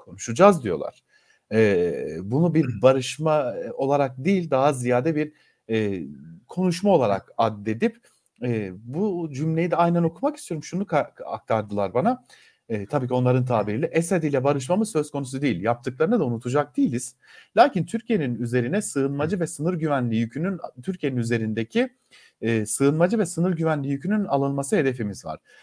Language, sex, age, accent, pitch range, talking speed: German, male, 40-59, Turkish, 125-175 Hz, 140 wpm